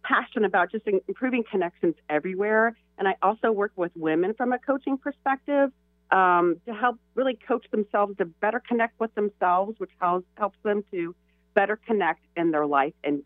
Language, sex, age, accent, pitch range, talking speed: English, female, 40-59, American, 140-205 Hz, 170 wpm